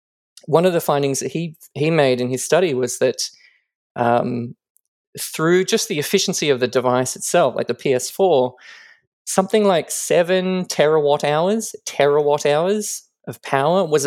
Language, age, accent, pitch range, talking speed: English, 20-39, Australian, 125-180 Hz, 150 wpm